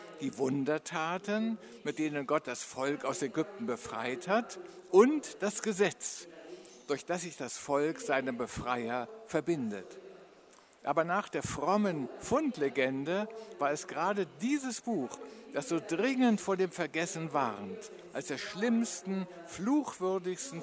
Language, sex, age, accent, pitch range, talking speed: Italian, male, 60-79, German, 145-220 Hz, 125 wpm